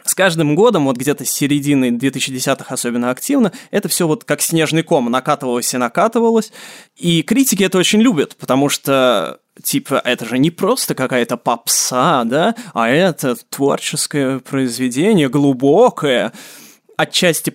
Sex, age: male, 20-39